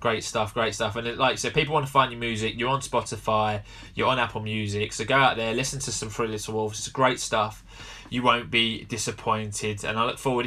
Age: 20-39